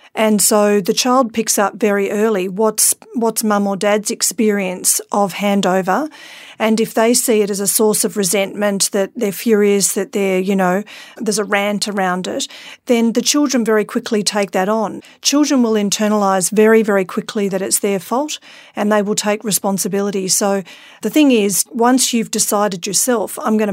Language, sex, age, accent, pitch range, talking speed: English, female, 40-59, Australian, 200-230 Hz, 180 wpm